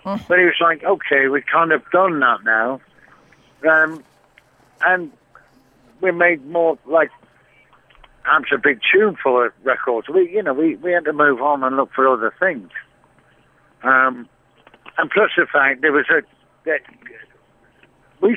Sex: male